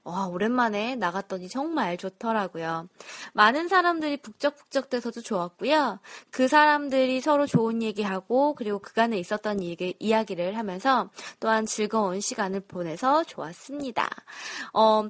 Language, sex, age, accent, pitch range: Korean, female, 20-39, native, 195-285 Hz